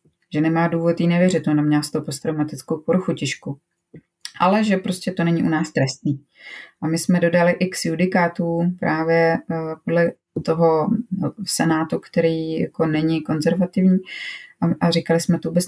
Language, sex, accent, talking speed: Czech, female, native, 150 wpm